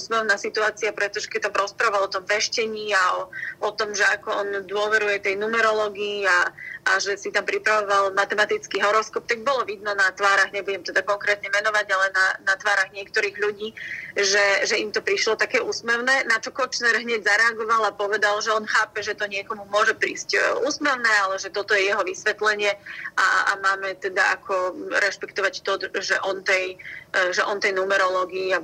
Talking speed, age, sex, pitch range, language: 180 wpm, 30-49, female, 195-215 Hz, Slovak